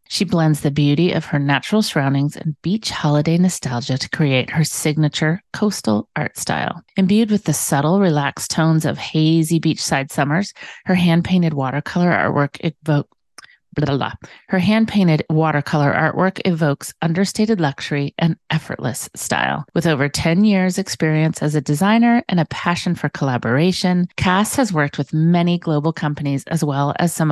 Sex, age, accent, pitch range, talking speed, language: female, 30-49, American, 145-185 Hz, 150 wpm, English